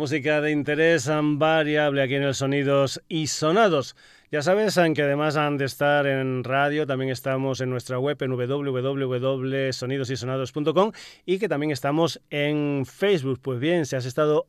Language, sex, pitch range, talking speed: Spanish, male, 130-155 Hz, 155 wpm